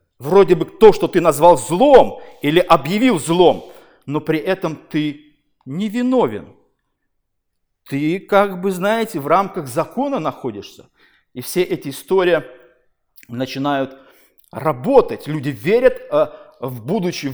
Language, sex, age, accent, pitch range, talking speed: Russian, male, 50-69, native, 145-200 Hz, 120 wpm